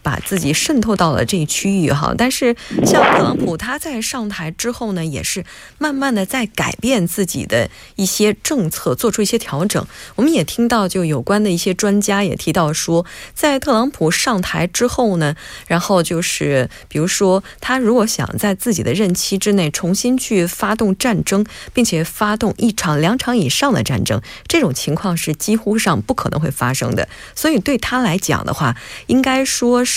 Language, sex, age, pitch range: Korean, female, 20-39, 165-225 Hz